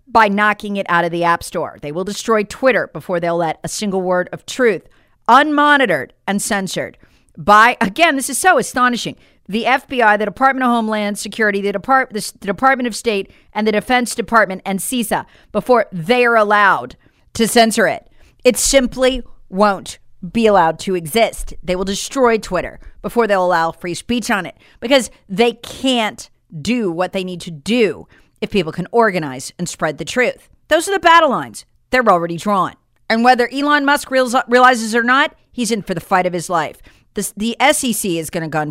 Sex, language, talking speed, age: female, English, 185 wpm, 50-69